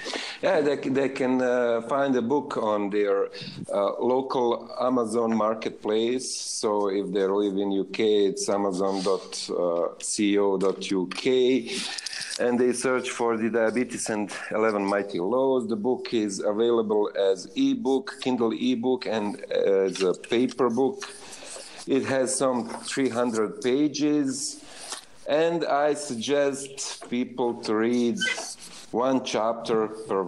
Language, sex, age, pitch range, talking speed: English, male, 50-69, 100-130 Hz, 115 wpm